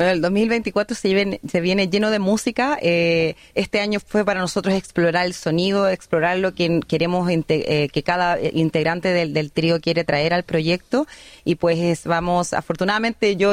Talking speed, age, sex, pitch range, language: 160 wpm, 30-49, female, 160-195 Hz, Spanish